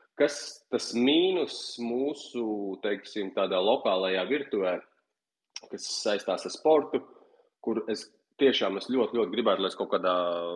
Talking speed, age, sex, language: 130 wpm, 30-49, male, English